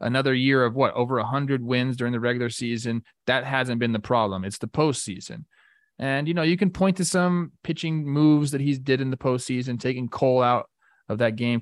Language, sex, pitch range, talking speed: English, male, 120-170 Hz, 215 wpm